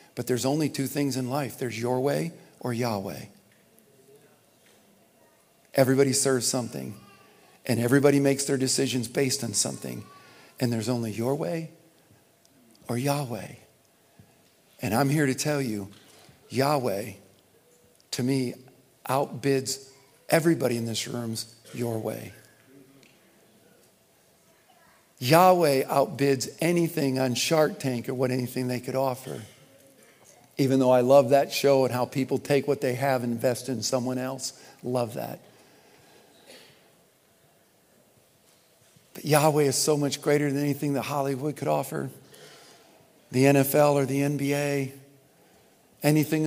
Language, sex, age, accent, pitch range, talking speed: English, male, 50-69, American, 125-140 Hz, 125 wpm